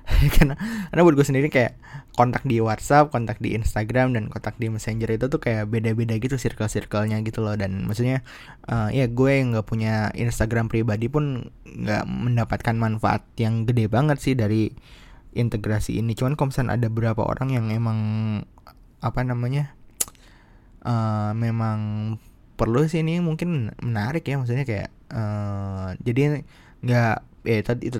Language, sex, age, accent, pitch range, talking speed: Indonesian, male, 20-39, native, 110-130 Hz, 150 wpm